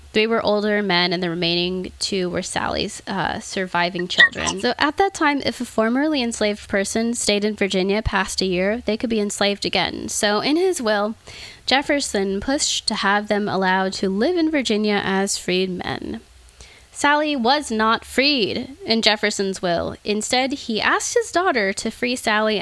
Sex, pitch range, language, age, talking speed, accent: female, 190-230 Hz, English, 10-29, 170 wpm, American